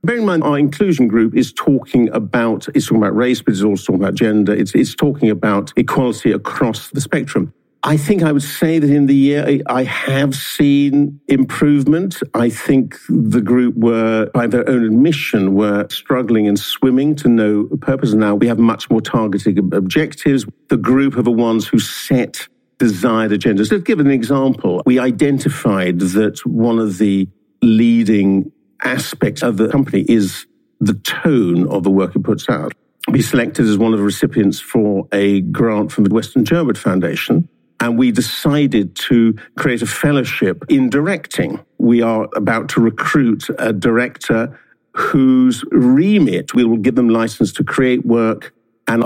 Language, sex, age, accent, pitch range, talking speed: English, male, 50-69, British, 110-140 Hz, 170 wpm